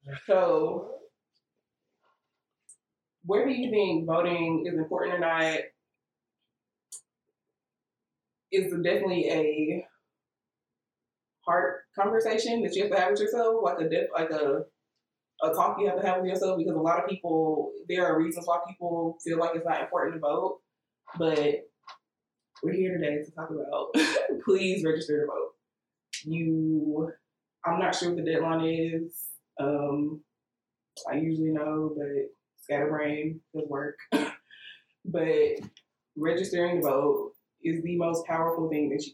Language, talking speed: English, 140 wpm